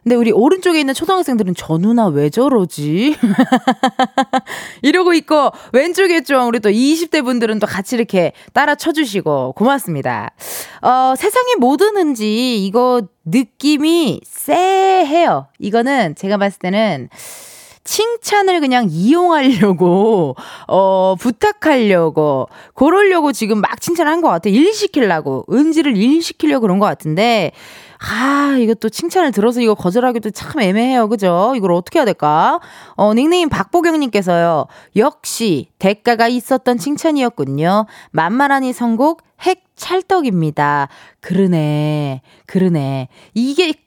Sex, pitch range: female, 175-275 Hz